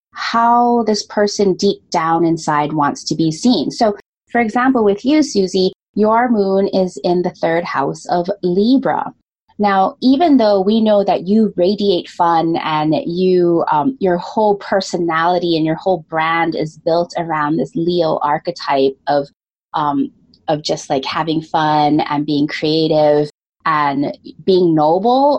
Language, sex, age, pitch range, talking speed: English, female, 20-39, 165-220 Hz, 150 wpm